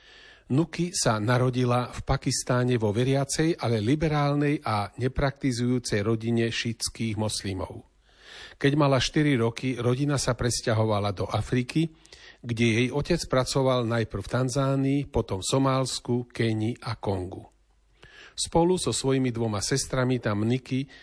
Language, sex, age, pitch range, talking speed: Slovak, male, 40-59, 115-140 Hz, 125 wpm